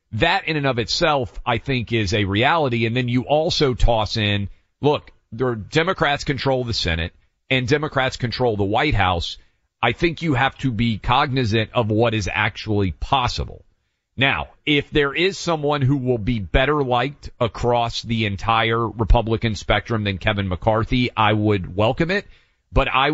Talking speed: 170 wpm